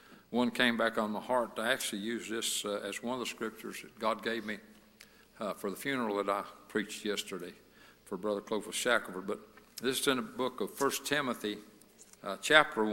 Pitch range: 115-180 Hz